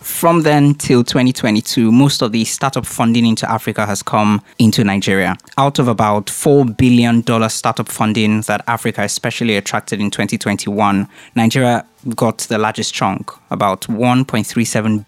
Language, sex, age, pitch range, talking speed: English, male, 20-39, 105-125 Hz, 140 wpm